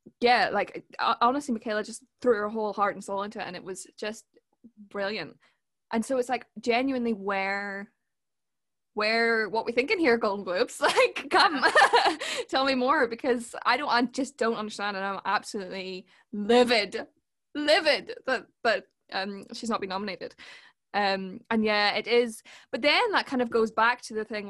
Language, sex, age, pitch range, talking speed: English, female, 10-29, 195-240 Hz, 175 wpm